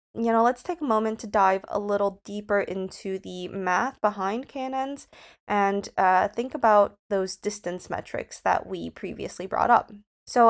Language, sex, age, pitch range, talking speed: English, female, 20-39, 185-220 Hz, 165 wpm